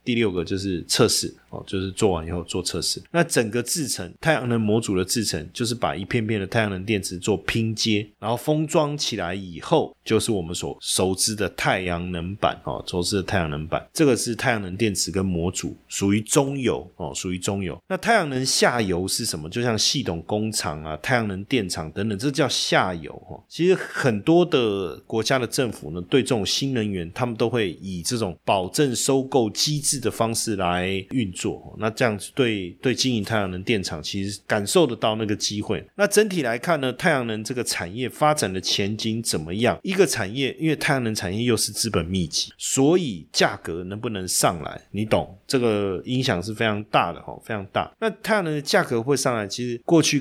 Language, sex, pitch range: Chinese, male, 95-130 Hz